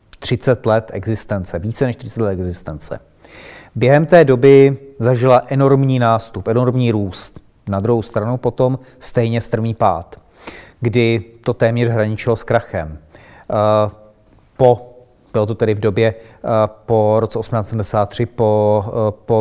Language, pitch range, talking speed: Czech, 110-135 Hz, 120 wpm